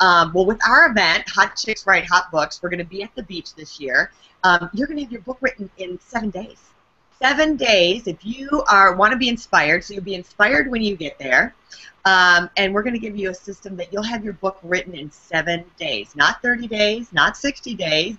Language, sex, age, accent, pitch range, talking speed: English, female, 30-49, American, 165-205 Hz, 235 wpm